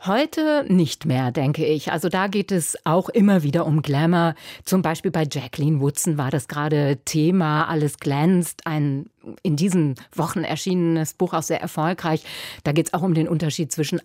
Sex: female